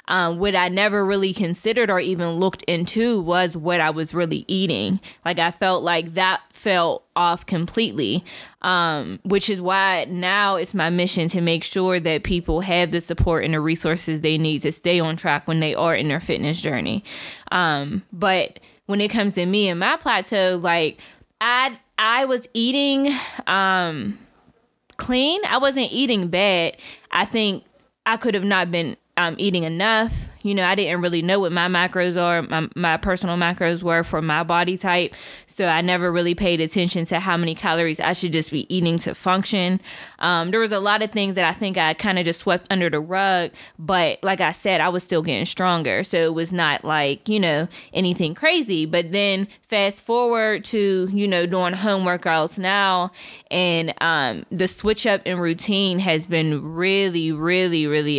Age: 20-39